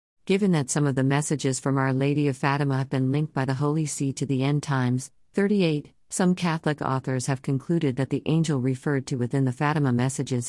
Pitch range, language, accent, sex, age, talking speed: 135-155 Hz, Malayalam, American, female, 50-69, 210 wpm